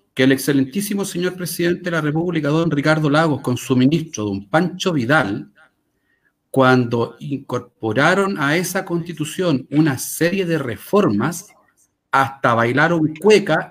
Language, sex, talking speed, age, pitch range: Spanish, male, 125 wpm, 50-69, 140-205 Hz